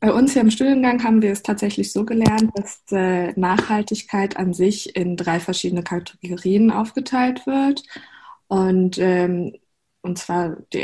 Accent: German